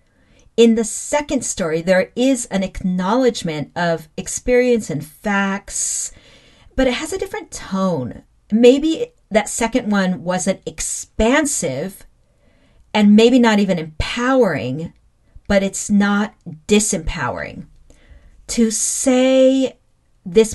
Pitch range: 180-245 Hz